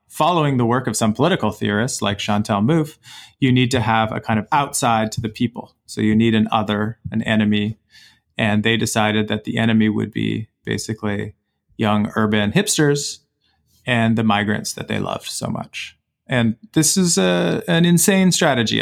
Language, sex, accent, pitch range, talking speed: English, male, American, 110-125 Hz, 170 wpm